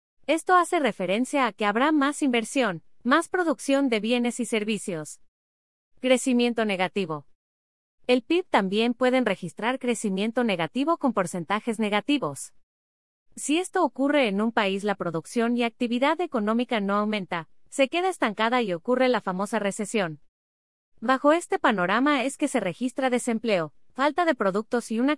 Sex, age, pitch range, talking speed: female, 30-49, 185-265 Hz, 145 wpm